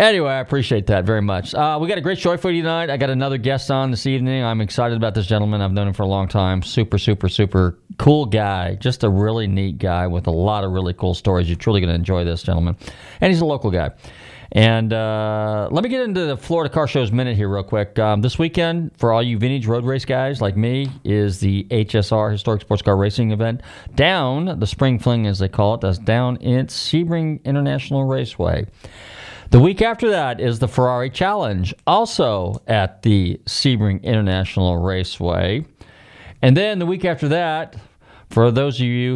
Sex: male